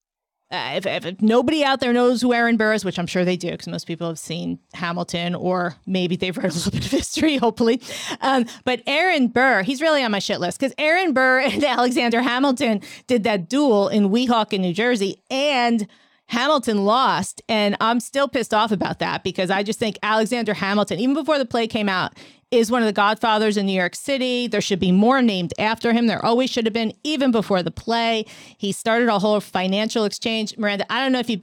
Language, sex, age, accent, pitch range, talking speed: English, female, 30-49, American, 195-255 Hz, 220 wpm